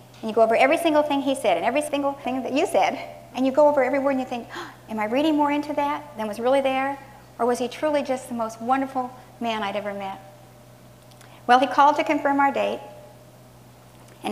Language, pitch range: English, 205-280 Hz